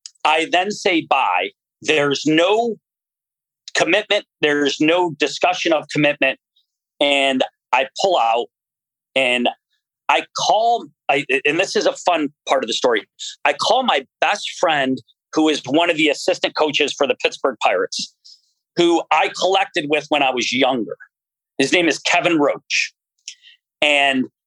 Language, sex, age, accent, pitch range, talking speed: English, male, 40-59, American, 140-195 Hz, 140 wpm